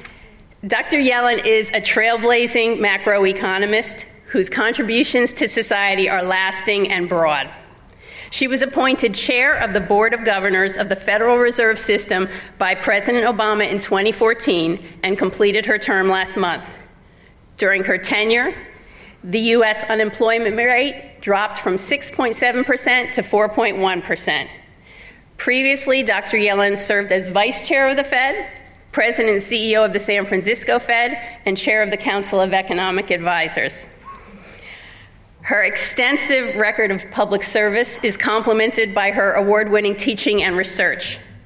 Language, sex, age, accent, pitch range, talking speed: English, female, 40-59, American, 195-235 Hz, 135 wpm